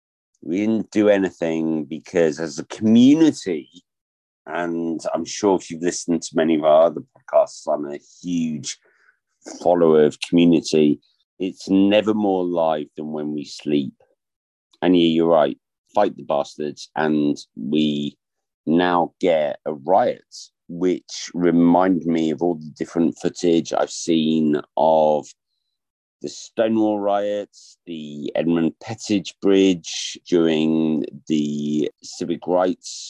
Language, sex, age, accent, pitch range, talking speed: English, male, 50-69, British, 75-95 Hz, 125 wpm